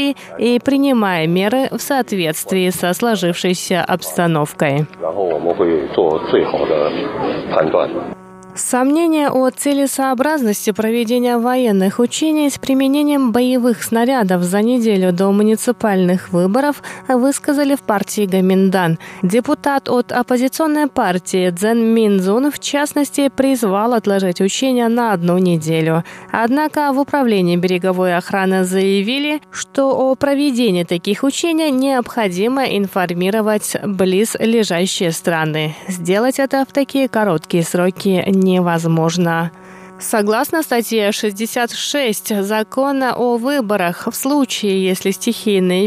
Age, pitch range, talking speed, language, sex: 20-39, 185-260 Hz, 95 wpm, Russian, female